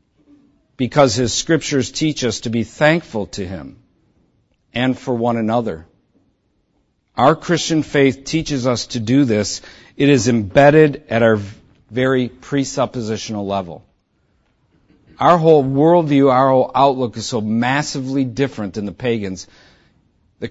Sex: male